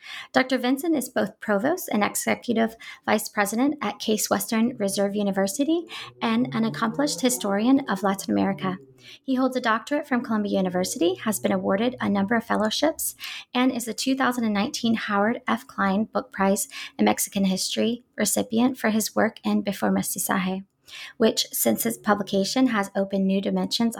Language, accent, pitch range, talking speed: English, American, 195-245 Hz, 155 wpm